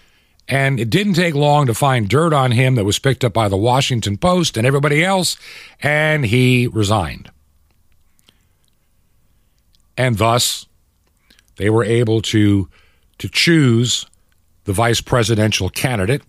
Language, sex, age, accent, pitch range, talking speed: English, male, 50-69, American, 95-135 Hz, 135 wpm